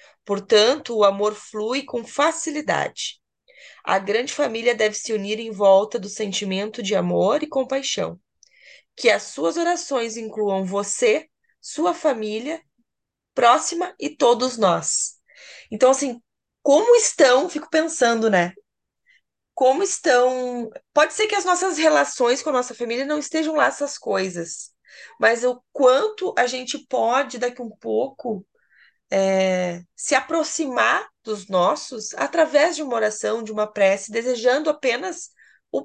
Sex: female